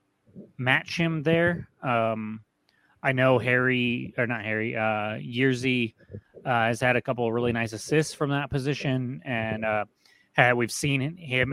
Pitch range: 110-135 Hz